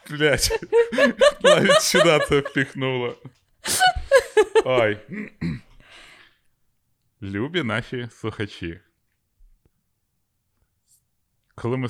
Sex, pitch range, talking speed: male, 90-120 Hz, 55 wpm